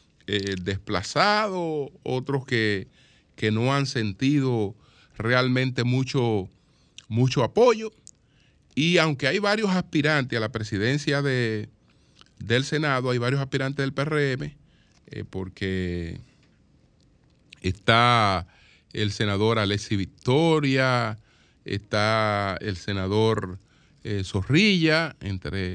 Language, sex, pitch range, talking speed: Spanish, male, 110-145 Hz, 95 wpm